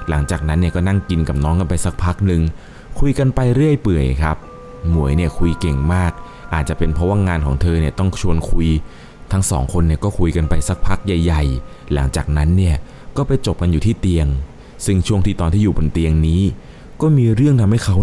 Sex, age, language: male, 20-39, Thai